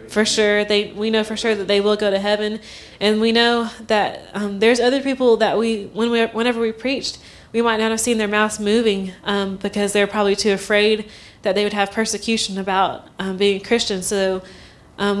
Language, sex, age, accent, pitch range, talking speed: English, female, 20-39, American, 200-225 Hz, 210 wpm